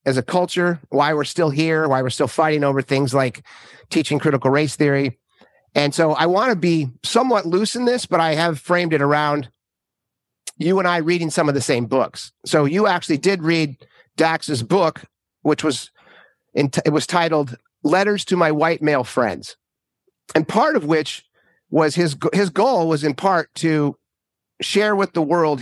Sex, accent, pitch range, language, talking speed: male, American, 135-170 Hz, English, 185 wpm